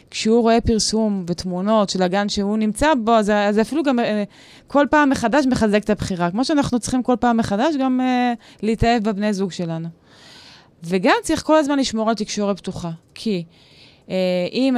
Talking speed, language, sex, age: 160 wpm, Hebrew, female, 20-39